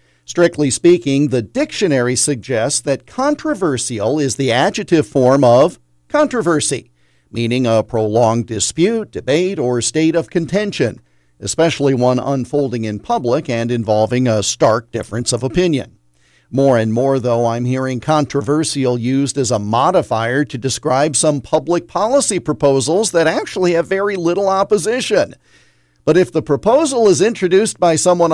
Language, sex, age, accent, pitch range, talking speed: English, male, 50-69, American, 120-170 Hz, 140 wpm